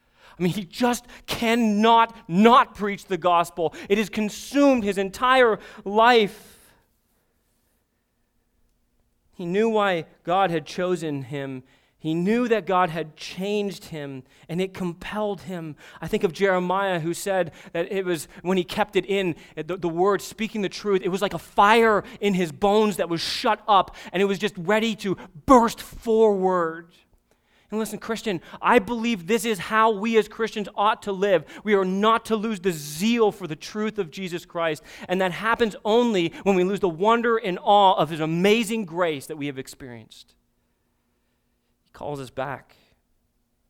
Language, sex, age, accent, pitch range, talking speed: English, male, 30-49, American, 165-215 Hz, 170 wpm